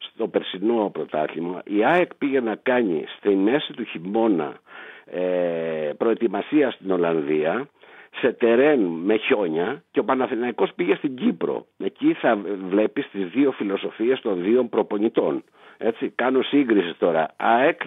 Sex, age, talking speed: male, 60-79, 135 wpm